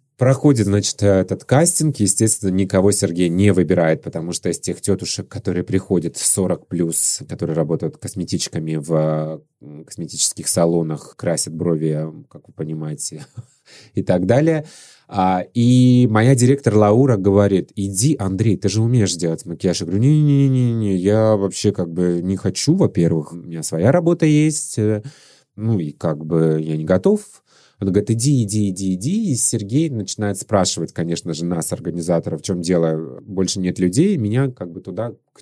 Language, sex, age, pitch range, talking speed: Russian, male, 30-49, 90-115 Hz, 165 wpm